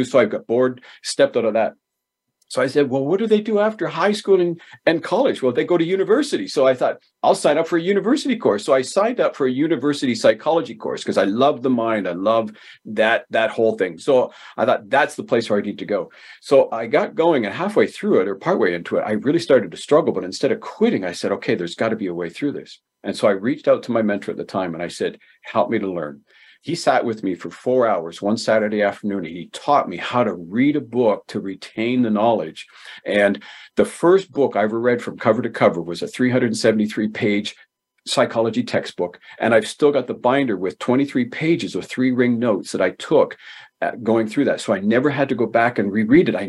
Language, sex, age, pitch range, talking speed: English, male, 50-69, 105-145 Hz, 240 wpm